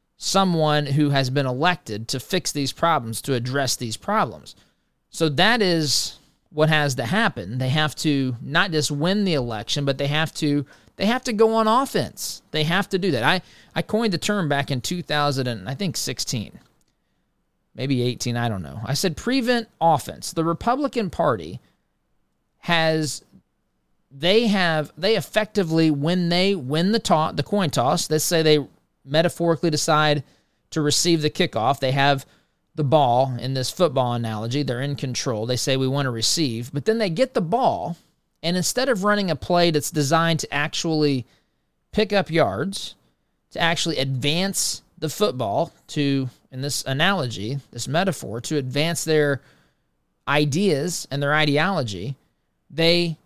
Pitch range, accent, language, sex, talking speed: 135-175 Hz, American, English, male, 160 wpm